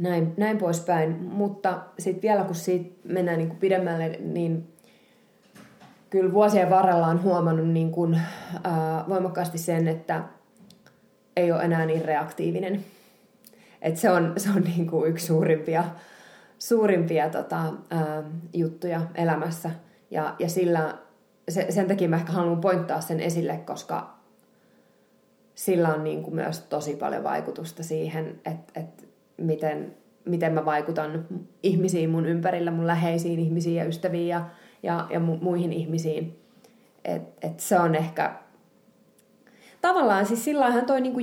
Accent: native